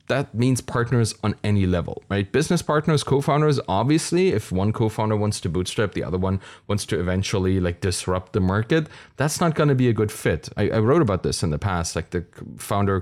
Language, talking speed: English, 210 wpm